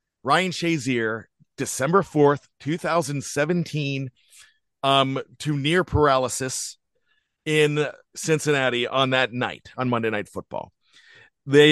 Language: English